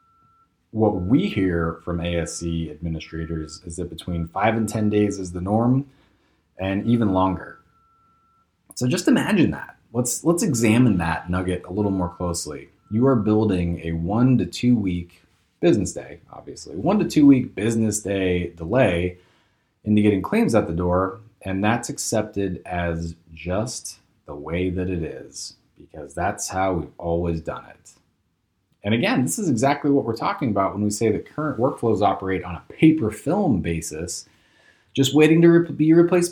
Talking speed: 165 wpm